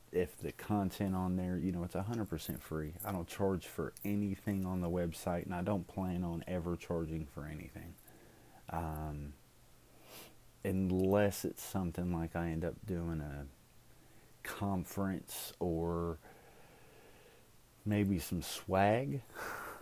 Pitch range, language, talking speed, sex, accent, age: 80-100 Hz, English, 125 wpm, male, American, 30-49